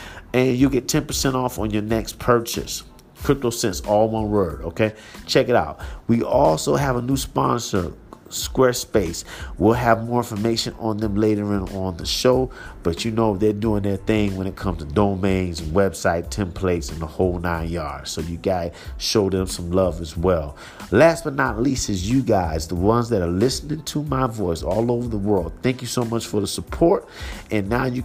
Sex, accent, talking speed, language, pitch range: male, American, 200 wpm, English, 85-115 Hz